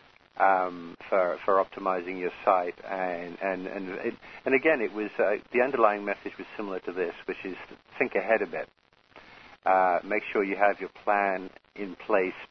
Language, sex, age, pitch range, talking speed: English, male, 50-69, 90-100 Hz, 180 wpm